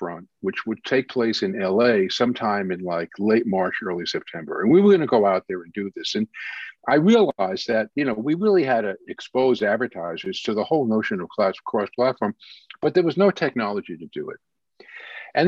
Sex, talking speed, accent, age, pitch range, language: male, 200 wpm, American, 50-69, 115-185 Hz, English